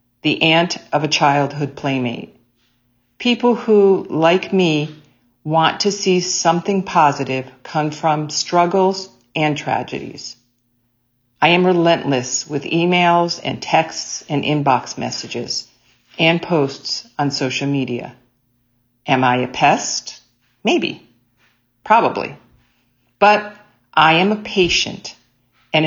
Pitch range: 130-170 Hz